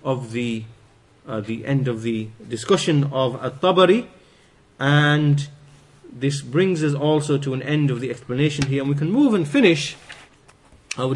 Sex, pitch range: male, 130-165 Hz